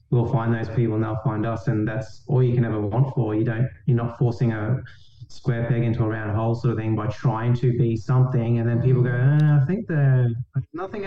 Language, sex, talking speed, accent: English, male, 240 wpm, Australian